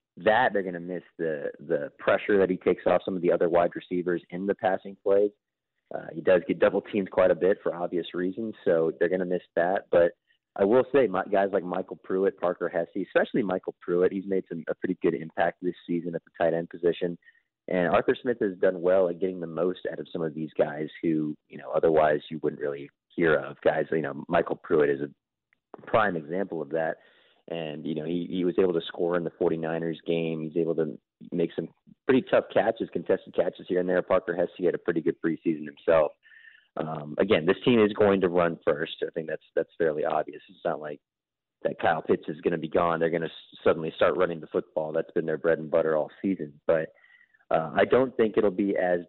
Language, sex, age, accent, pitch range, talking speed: English, male, 30-49, American, 85-100 Hz, 230 wpm